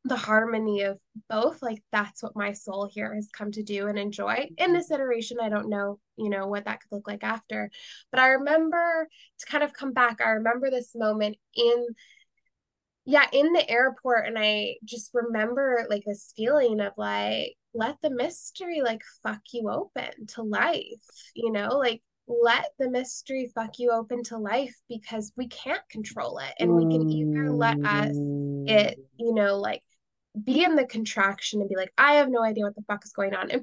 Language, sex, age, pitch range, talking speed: English, female, 10-29, 210-260 Hz, 195 wpm